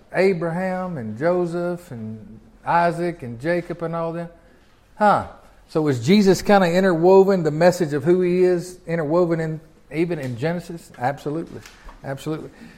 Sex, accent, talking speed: male, American, 140 wpm